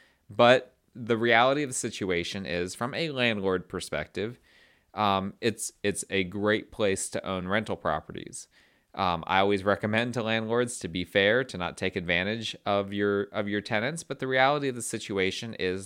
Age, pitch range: 30-49, 90-115 Hz